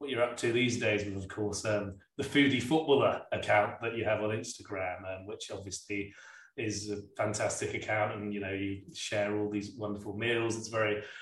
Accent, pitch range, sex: British, 105-120 Hz, male